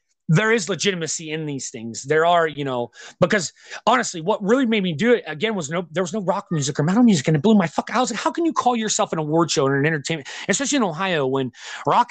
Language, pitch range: English, 150-210 Hz